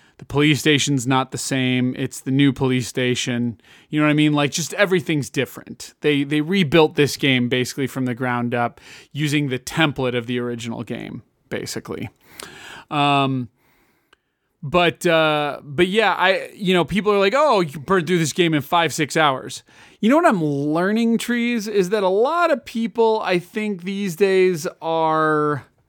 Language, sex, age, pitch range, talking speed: English, male, 30-49, 140-185 Hz, 175 wpm